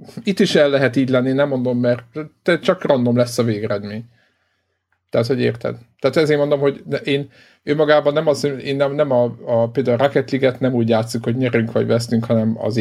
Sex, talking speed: male, 205 wpm